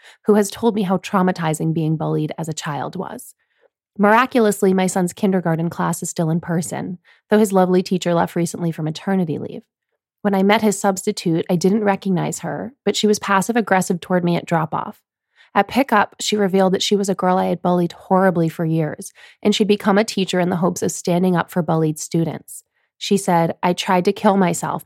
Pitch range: 165-200 Hz